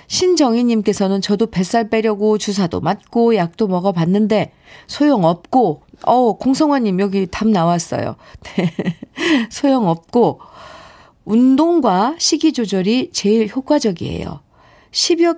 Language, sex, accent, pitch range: Korean, female, native, 180-265 Hz